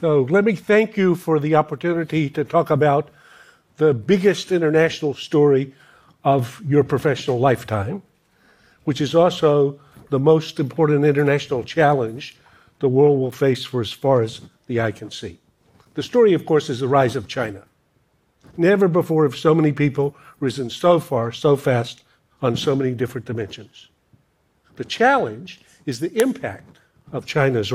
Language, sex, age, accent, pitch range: Korean, male, 60-79, American, 135-170 Hz